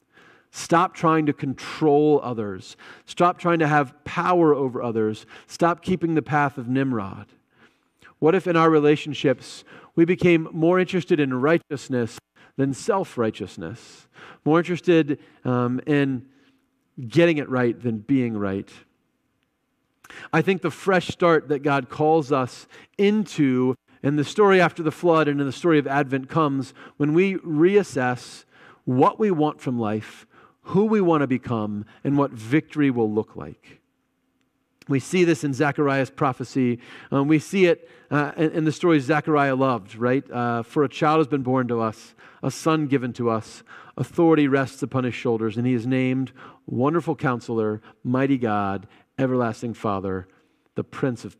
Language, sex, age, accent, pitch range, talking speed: English, male, 40-59, American, 125-160 Hz, 155 wpm